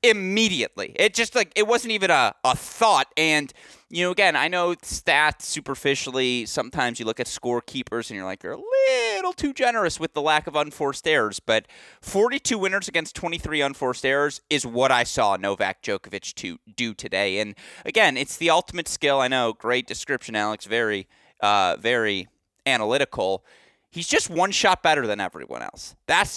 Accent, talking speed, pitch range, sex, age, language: American, 180 wpm, 115-180 Hz, male, 30-49, English